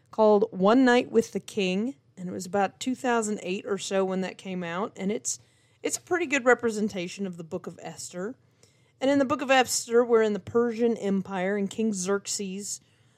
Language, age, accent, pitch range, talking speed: English, 30-49, American, 180-225 Hz, 195 wpm